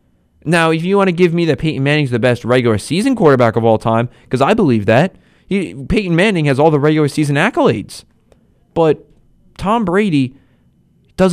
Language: English